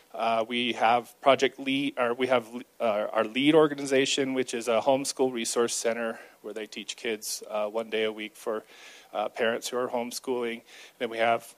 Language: English